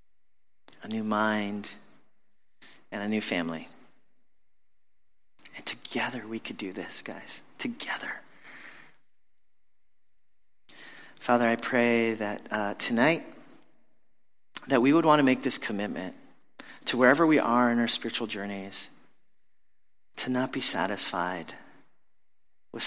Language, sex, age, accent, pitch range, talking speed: English, male, 40-59, American, 105-140 Hz, 110 wpm